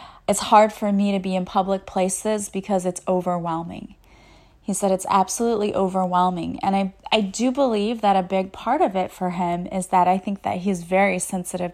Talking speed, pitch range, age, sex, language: 195 wpm, 180-210 Hz, 30-49, female, English